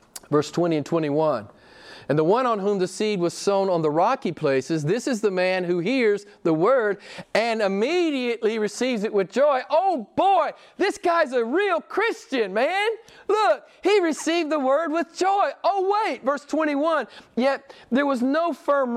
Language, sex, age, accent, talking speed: English, male, 40-59, American, 175 wpm